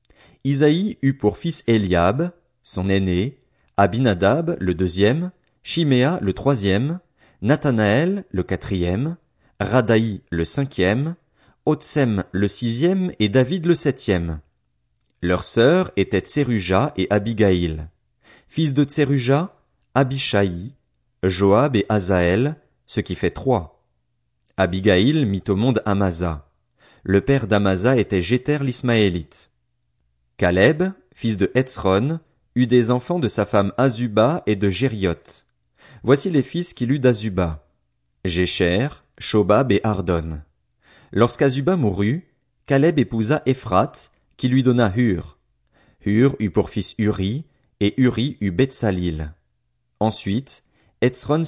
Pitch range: 95-135 Hz